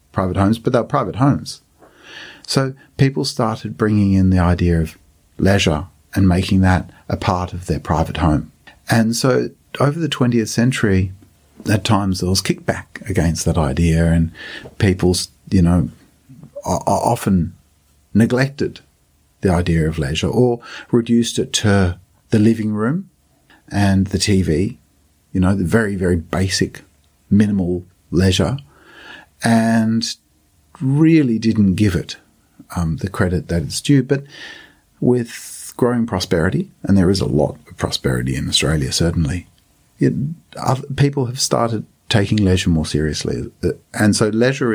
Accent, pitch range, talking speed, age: Australian, 85-115 Hz, 135 wpm, 50-69